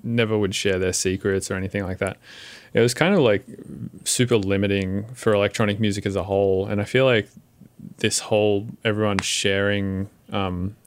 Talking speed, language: 170 wpm, English